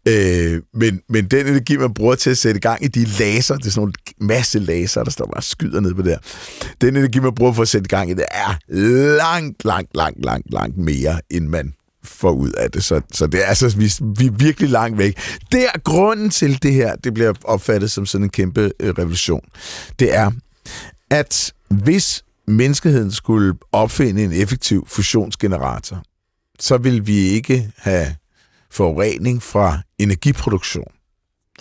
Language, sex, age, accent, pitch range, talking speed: Danish, male, 60-79, native, 90-120 Hz, 180 wpm